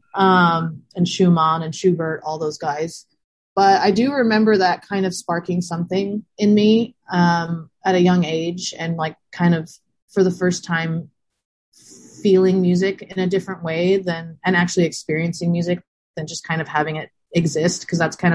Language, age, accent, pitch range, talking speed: English, 30-49, American, 160-185 Hz, 175 wpm